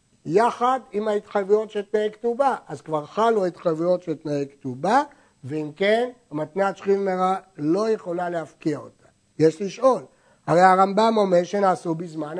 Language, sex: Hebrew, male